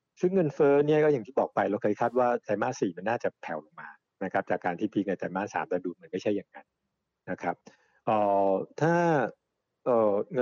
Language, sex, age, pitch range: Thai, male, 60-79, 100-135 Hz